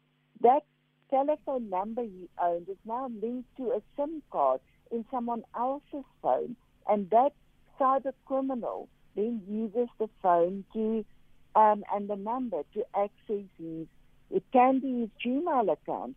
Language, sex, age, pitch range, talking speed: English, female, 60-79, 195-250 Hz, 140 wpm